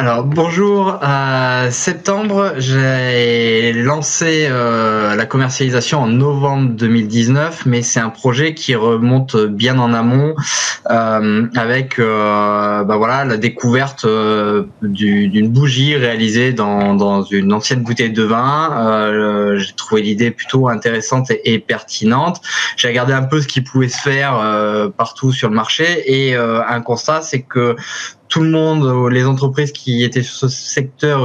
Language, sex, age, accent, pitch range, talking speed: French, male, 20-39, French, 115-140 Hz, 150 wpm